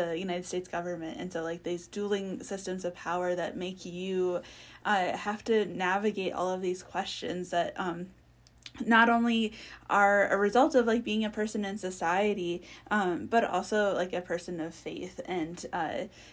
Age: 10-29